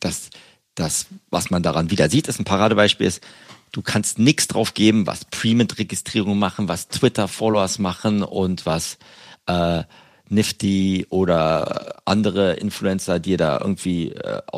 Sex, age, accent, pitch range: male, 40-59, German, 95-110 Hz